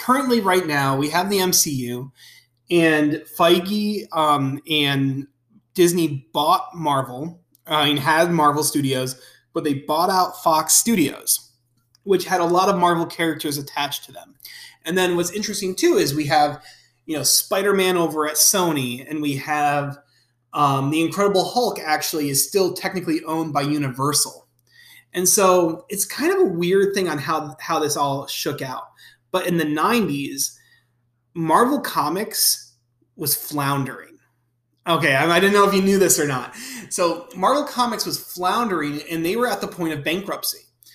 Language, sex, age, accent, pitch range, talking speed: English, male, 30-49, American, 145-185 Hz, 160 wpm